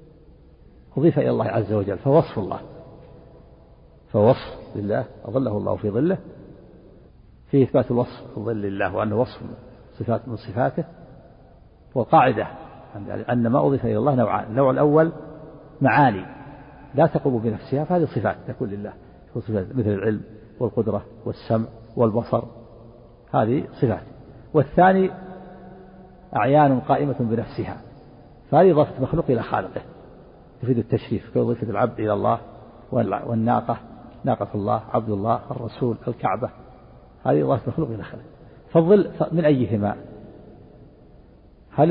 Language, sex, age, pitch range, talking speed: Arabic, male, 60-79, 115-150 Hz, 110 wpm